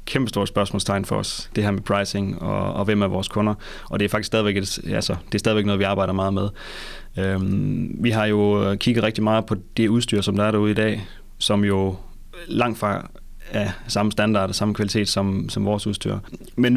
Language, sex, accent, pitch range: Danish, male, native, 100-115 Hz